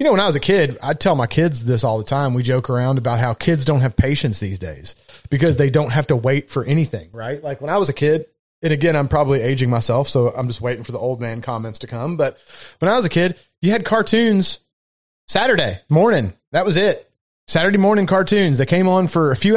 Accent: American